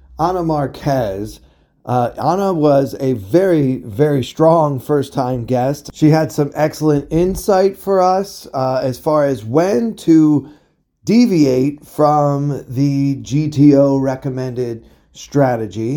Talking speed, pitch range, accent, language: 115 wpm, 125-150 Hz, American, English